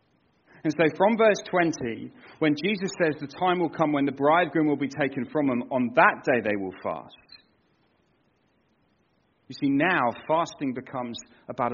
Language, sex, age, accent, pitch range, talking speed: English, male, 40-59, British, 125-160 Hz, 165 wpm